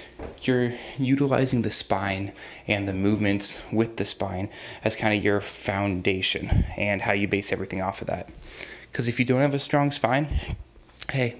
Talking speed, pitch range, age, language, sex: 170 wpm, 100-120 Hz, 10-29, English, male